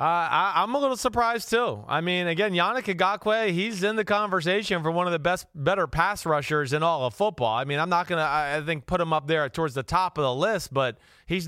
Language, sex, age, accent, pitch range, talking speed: English, male, 30-49, American, 145-180 Hz, 245 wpm